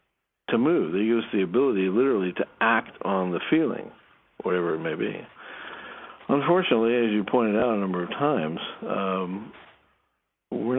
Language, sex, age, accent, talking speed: English, male, 60-79, American, 155 wpm